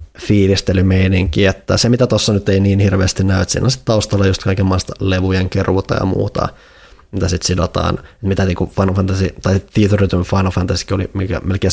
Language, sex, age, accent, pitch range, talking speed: Finnish, male, 20-39, native, 95-100 Hz, 180 wpm